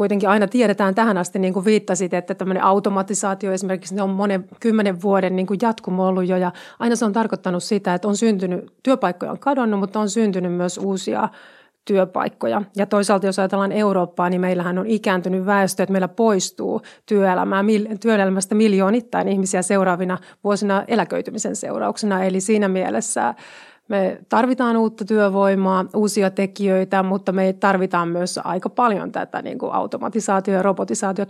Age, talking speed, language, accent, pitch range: 30-49, 150 wpm, Finnish, native, 185-215 Hz